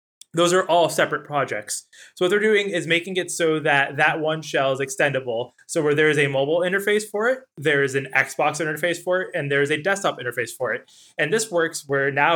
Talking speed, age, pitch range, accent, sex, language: 235 wpm, 20-39, 140-175 Hz, American, male, English